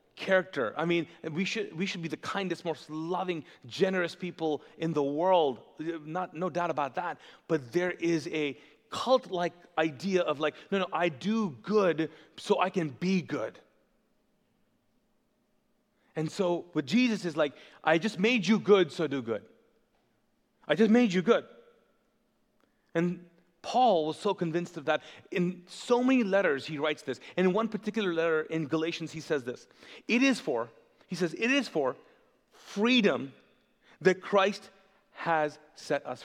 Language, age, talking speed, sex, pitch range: English, 30-49, 160 wpm, male, 170-225 Hz